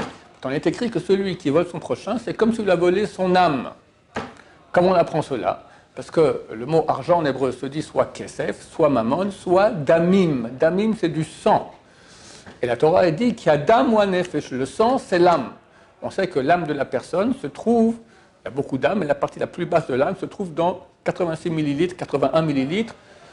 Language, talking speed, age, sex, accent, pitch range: French, 215 wpm, 60-79, male, French, 135-185 Hz